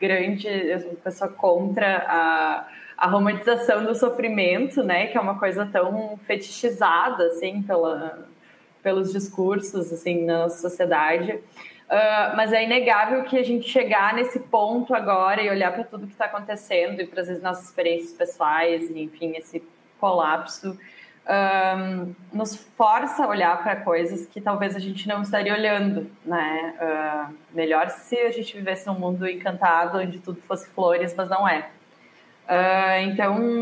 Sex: female